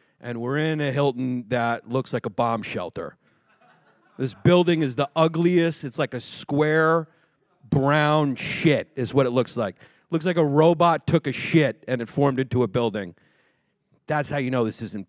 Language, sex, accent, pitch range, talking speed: English, male, American, 115-150 Hz, 185 wpm